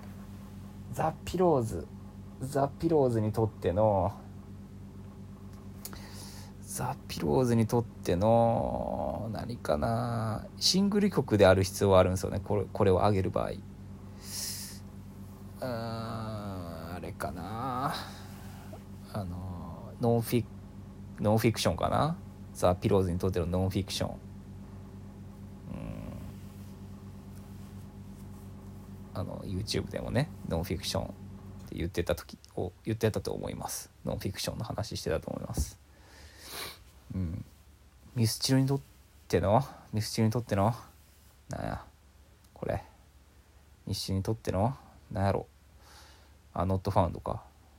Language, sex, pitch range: Japanese, male, 90-100 Hz